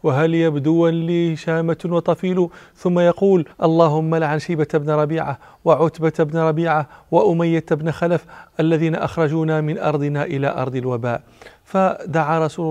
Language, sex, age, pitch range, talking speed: Arabic, male, 40-59, 150-170 Hz, 125 wpm